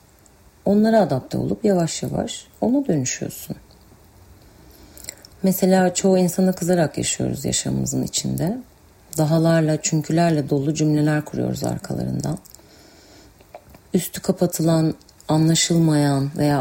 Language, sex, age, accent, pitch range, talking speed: Turkish, female, 40-59, native, 150-180 Hz, 85 wpm